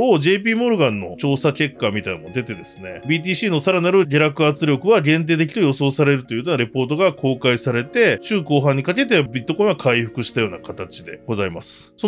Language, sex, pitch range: Japanese, male, 120-180 Hz